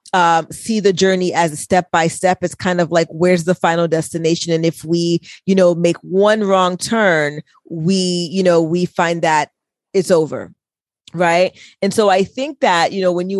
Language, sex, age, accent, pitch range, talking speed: English, female, 30-49, American, 165-190 Hz, 195 wpm